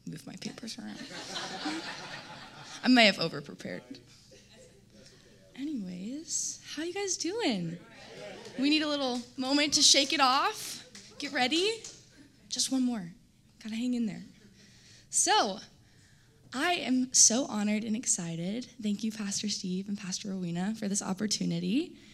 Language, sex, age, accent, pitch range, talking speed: English, female, 10-29, American, 205-275 Hz, 135 wpm